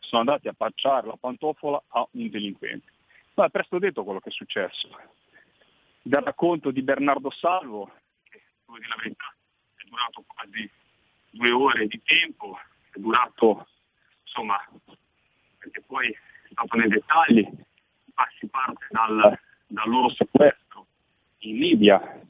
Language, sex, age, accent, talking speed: Italian, male, 40-59, native, 130 wpm